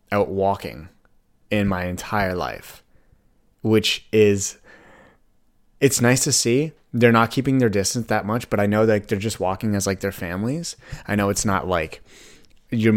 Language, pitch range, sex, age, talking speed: English, 110-130 Hz, male, 30-49, 165 wpm